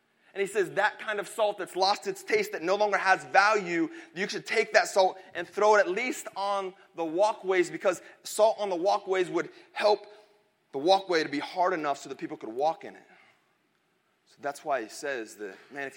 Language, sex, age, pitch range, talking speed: English, male, 30-49, 150-200 Hz, 215 wpm